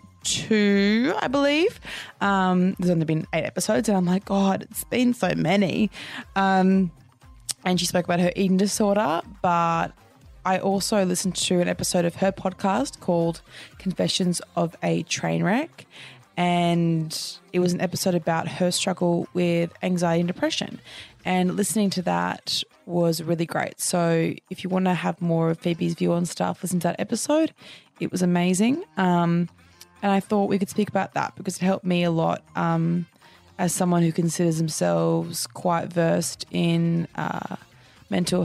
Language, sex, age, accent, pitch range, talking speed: English, female, 20-39, Australian, 170-195 Hz, 160 wpm